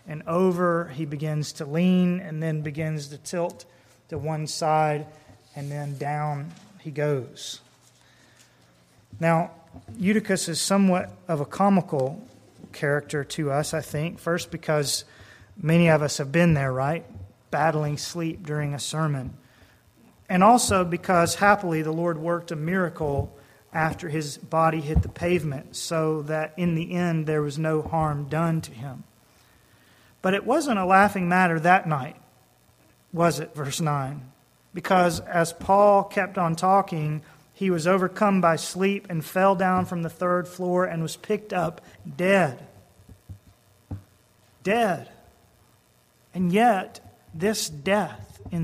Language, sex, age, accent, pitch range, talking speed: English, male, 30-49, American, 140-175 Hz, 140 wpm